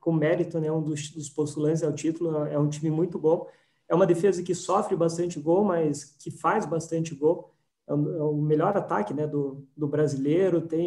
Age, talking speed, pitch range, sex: 20-39, 195 wpm, 155-175 Hz, male